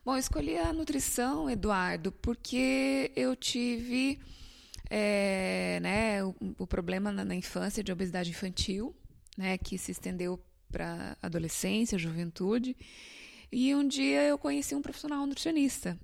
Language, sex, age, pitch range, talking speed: Portuguese, female, 20-39, 185-250 Hz, 125 wpm